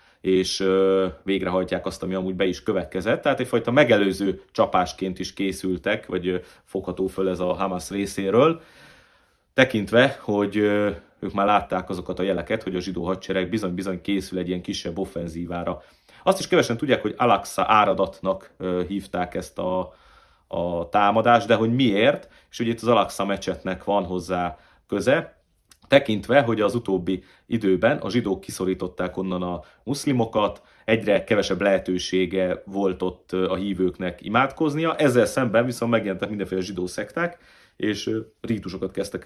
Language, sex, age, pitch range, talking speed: Hungarian, male, 30-49, 90-110 Hz, 140 wpm